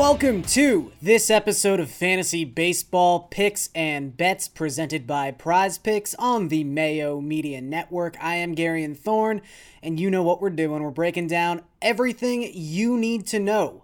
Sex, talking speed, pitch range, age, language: male, 160 wpm, 160-210 Hz, 20-39, English